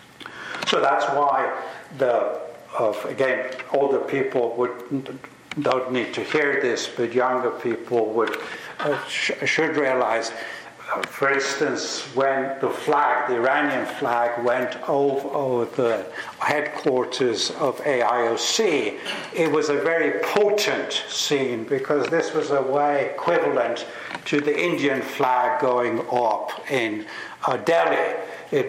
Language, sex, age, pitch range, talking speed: Persian, male, 70-89, 125-155 Hz, 125 wpm